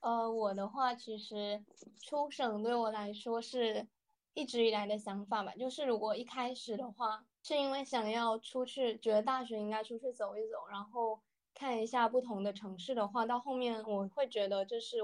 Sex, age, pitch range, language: female, 20-39, 205-245 Hz, Chinese